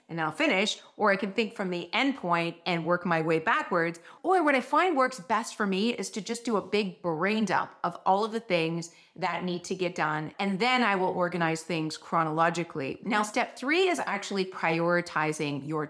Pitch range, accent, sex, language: 165-215 Hz, American, female, English